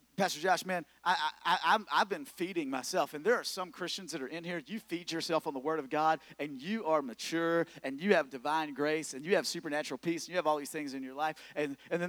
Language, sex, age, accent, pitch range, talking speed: English, male, 40-59, American, 155-245 Hz, 265 wpm